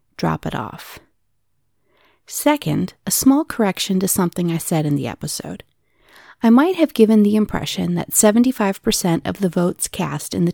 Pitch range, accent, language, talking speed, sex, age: 165-225 Hz, American, English, 160 wpm, female, 40-59